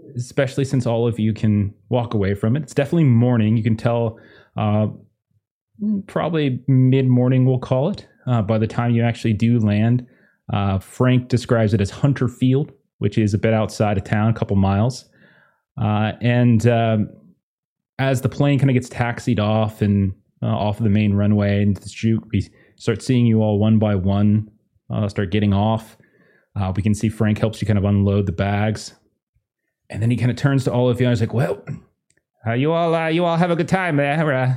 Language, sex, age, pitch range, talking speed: English, male, 20-39, 110-140 Hz, 205 wpm